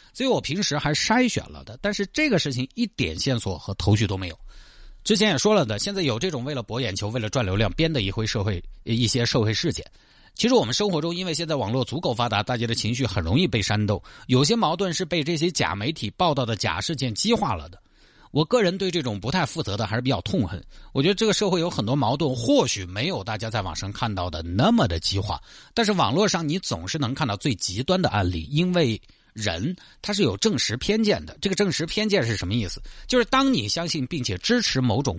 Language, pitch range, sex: Chinese, 110-180 Hz, male